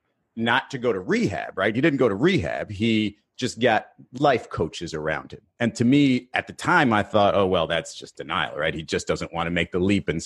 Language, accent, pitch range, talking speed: English, American, 95-120 Hz, 240 wpm